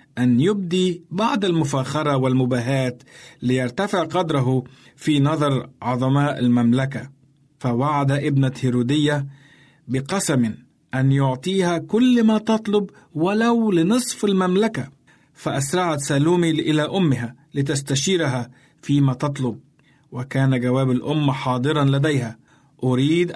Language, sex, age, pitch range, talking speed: Arabic, male, 50-69, 130-160 Hz, 90 wpm